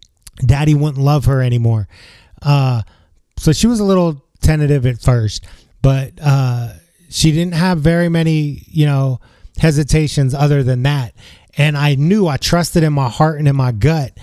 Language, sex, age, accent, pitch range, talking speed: English, male, 20-39, American, 120-150 Hz, 165 wpm